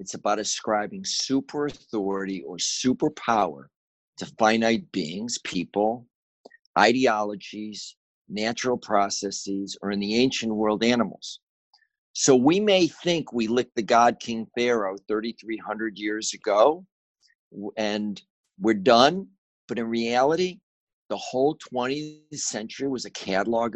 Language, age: English, 50-69